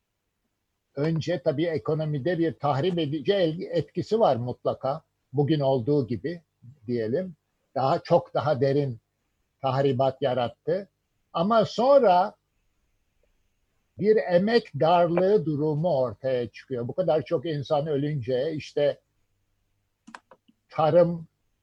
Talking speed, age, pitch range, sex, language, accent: 95 wpm, 60-79, 130-175 Hz, male, Turkish, native